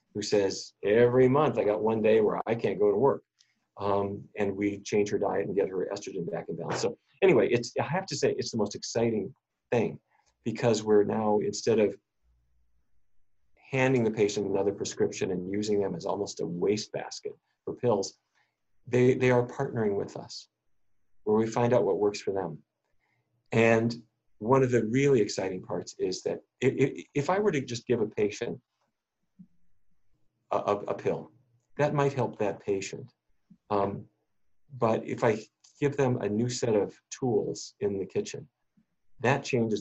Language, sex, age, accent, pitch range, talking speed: English, male, 40-59, American, 105-130 Hz, 175 wpm